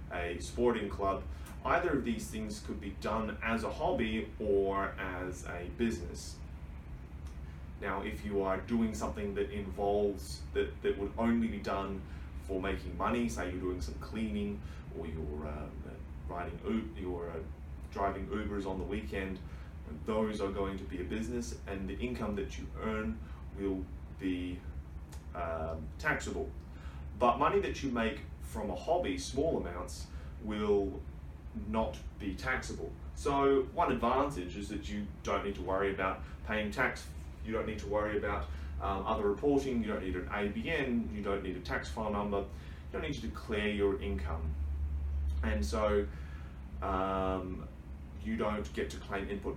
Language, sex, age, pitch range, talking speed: English, male, 30-49, 75-100 Hz, 155 wpm